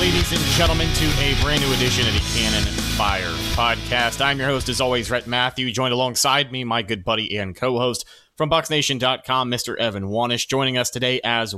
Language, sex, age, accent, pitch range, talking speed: English, male, 30-49, American, 115-145 Hz, 190 wpm